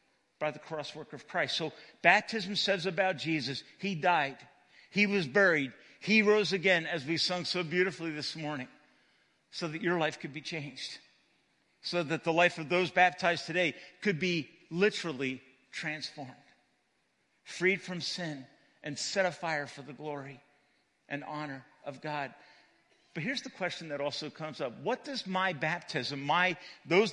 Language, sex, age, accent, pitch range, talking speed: English, male, 50-69, American, 150-195 Hz, 160 wpm